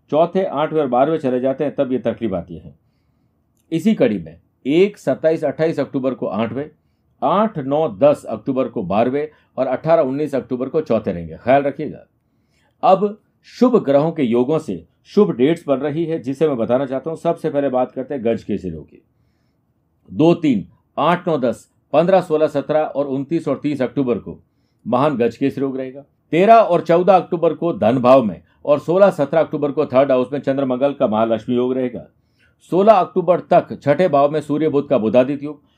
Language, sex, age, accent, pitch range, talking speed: Hindi, male, 50-69, native, 130-165 Hz, 170 wpm